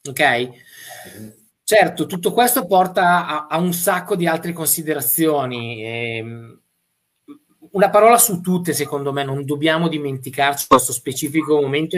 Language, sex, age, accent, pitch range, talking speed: Italian, male, 20-39, native, 135-180 Hz, 115 wpm